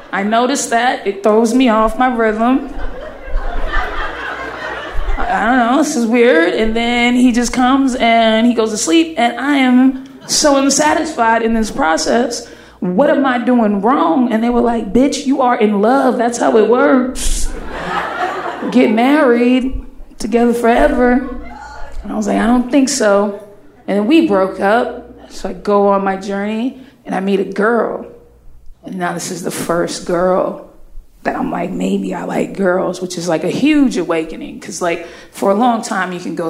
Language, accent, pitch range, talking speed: English, American, 195-260 Hz, 180 wpm